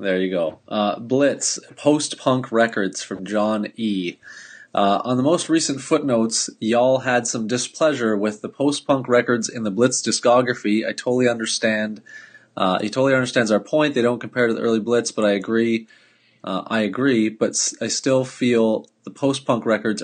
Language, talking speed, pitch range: English, 170 wpm, 105-125 Hz